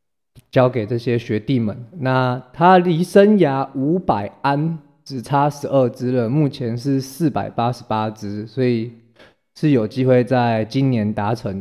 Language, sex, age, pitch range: Chinese, male, 20-39, 115-135 Hz